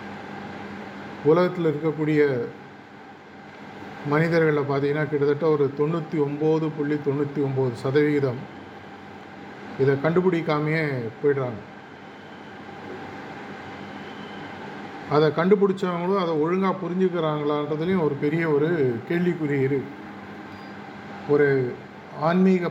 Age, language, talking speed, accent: 50-69, Tamil, 70 wpm, native